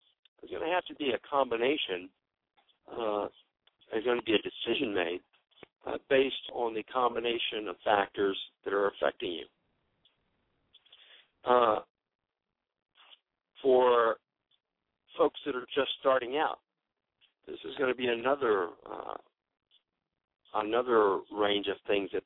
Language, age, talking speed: English, 50-69, 125 wpm